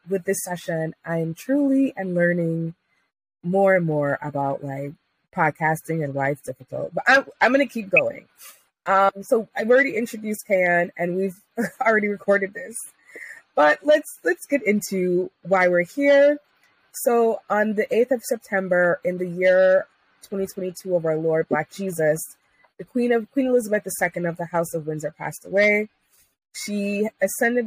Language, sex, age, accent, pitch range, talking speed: English, female, 20-39, American, 160-210 Hz, 160 wpm